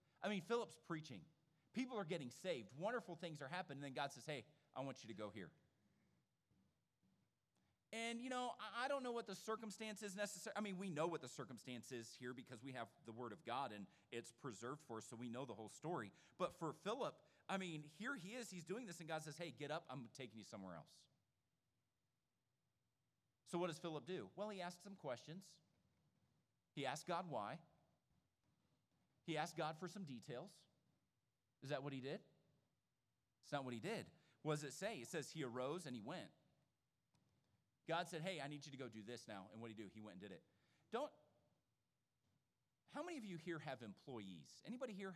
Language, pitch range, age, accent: English, 125-185 Hz, 40-59, American